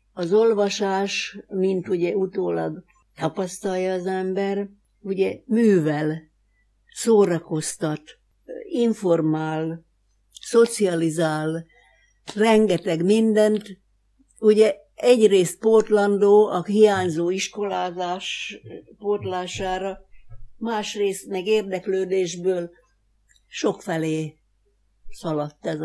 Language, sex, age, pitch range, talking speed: Hungarian, female, 60-79, 170-210 Hz, 65 wpm